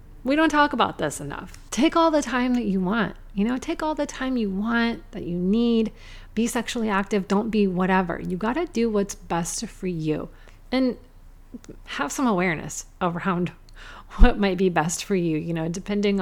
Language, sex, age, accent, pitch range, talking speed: English, female, 30-49, American, 175-235 Hz, 190 wpm